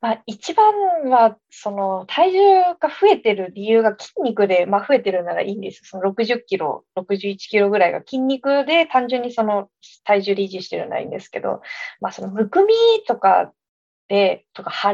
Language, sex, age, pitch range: Japanese, female, 20-39, 205-285 Hz